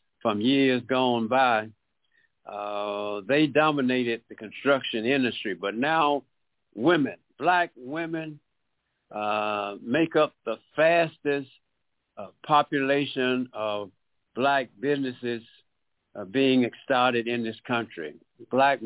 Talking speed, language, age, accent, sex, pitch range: 100 wpm, English, 60-79, American, male, 115-150 Hz